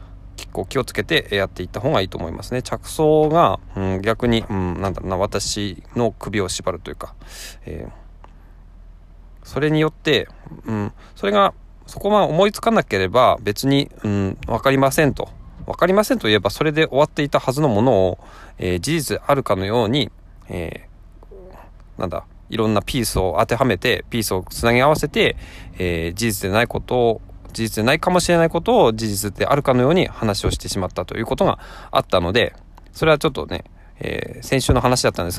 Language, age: Japanese, 20-39